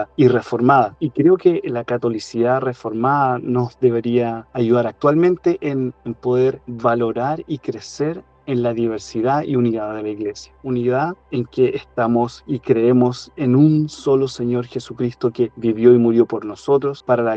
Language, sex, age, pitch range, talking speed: Spanish, male, 30-49, 115-140 Hz, 155 wpm